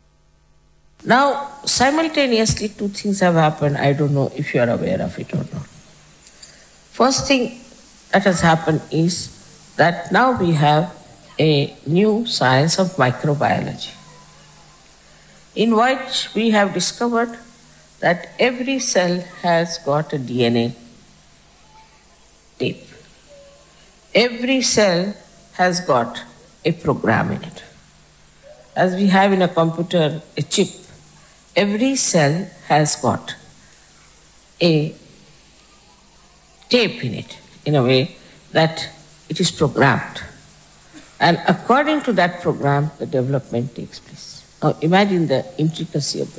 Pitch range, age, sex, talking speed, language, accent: 150-215 Hz, 60-79, female, 120 wpm, English, Indian